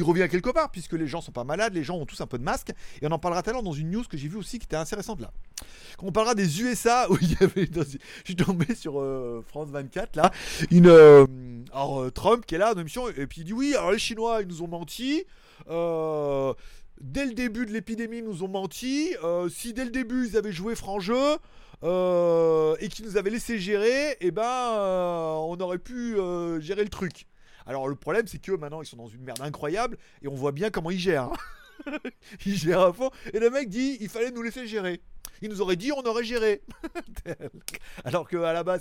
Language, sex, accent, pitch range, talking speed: French, male, French, 135-210 Hz, 235 wpm